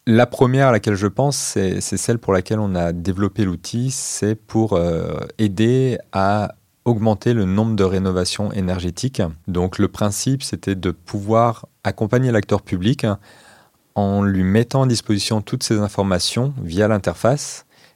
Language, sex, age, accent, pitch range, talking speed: French, male, 30-49, French, 90-115 Hz, 145 wpm